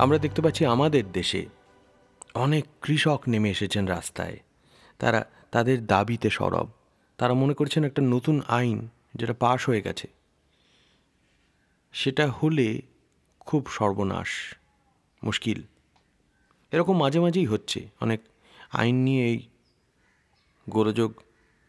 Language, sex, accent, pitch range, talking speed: Bengali, male, native, 105-155 Hz, 85 wpm